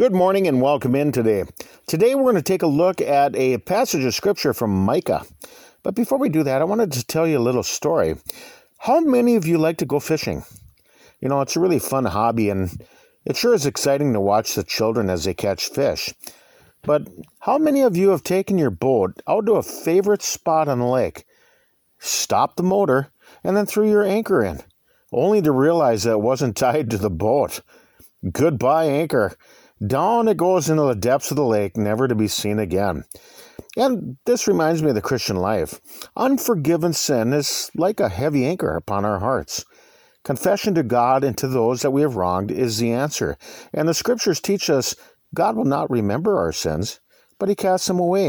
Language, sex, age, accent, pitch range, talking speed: English, male, 50-69, American, 125-200 Hz, 200 wpm